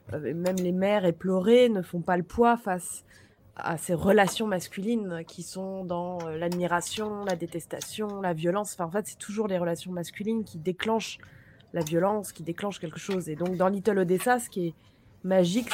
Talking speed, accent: 180 wpm, French